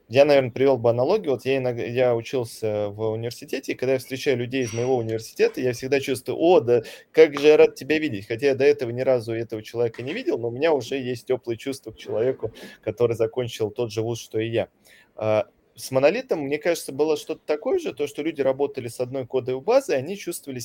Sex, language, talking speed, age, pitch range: male, Russian, 220 wpm, 20-39, 115-145 Hz